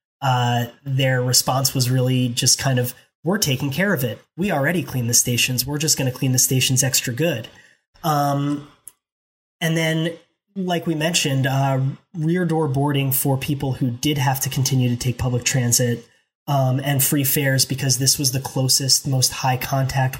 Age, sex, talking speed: 20-39, male, 180 wpm